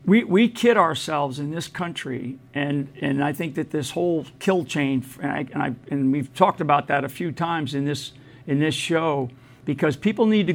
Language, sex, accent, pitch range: English, male, American, 145-185 Hz